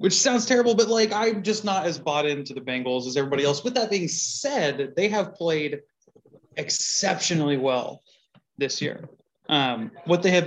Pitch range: 150-200 Hz